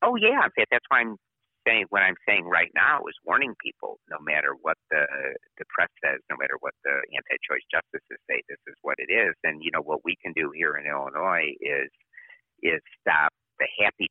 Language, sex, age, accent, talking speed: English, male, 50-69, American, 205 wpm